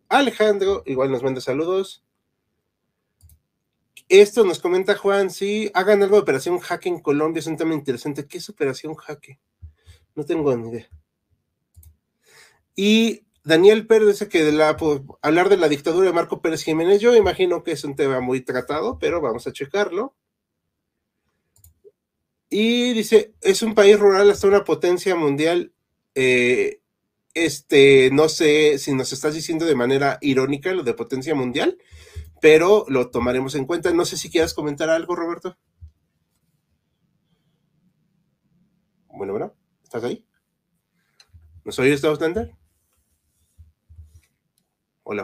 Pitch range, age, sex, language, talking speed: 130-190 Hz, 40-59, male, Spanish, 130 wpm